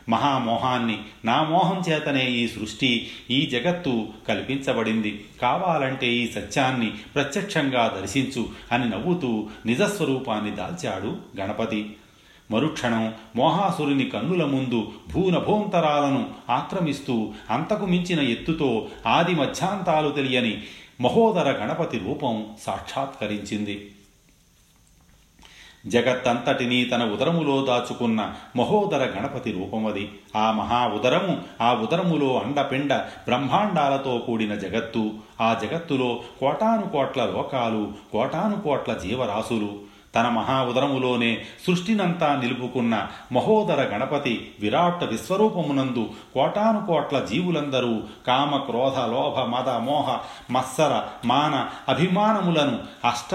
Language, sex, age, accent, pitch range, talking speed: Telugu, male, 40-59, native, 110-150 Hz, 85 wpm